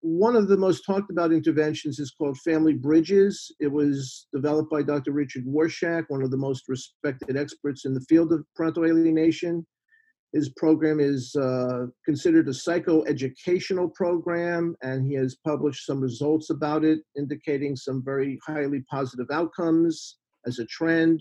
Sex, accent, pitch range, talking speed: male, American, 140-170 Hz, 155 wpm